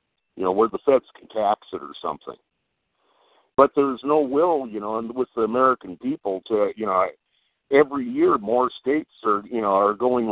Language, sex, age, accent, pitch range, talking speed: English, male, 50-69, American, 120-175 Hz, 190 wpm